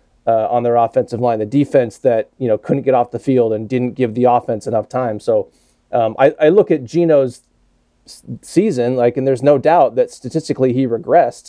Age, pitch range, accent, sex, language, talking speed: 30-49, 120-145 Hz, American, male, English, 205 wpm